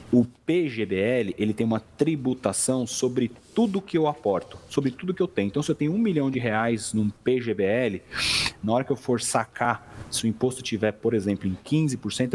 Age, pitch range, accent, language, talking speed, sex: 40-59, 110-145 Hz, Brazilian, Portuguese, 195 wpm, male